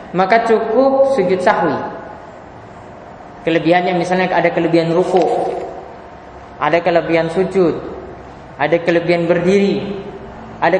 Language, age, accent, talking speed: Indonesian, 20-39, native, 90 wpm